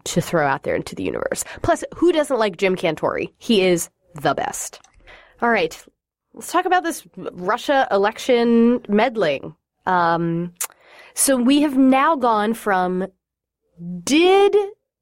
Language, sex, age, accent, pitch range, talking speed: English, female, 20-39, American, 180-270 Hz, 135 wpm